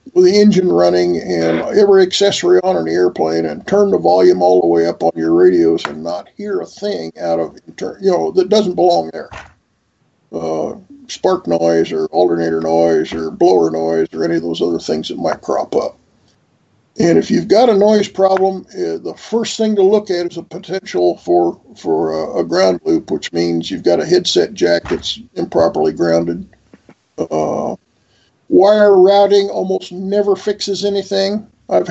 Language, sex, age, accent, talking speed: English, male, 50-69, American, 175 wpm